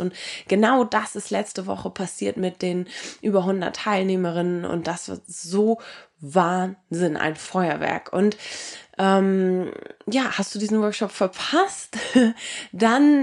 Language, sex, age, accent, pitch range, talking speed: German, female, 20-39, German, 180-235 Hz, 125 wpm